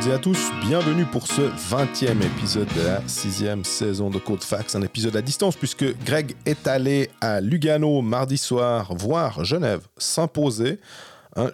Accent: French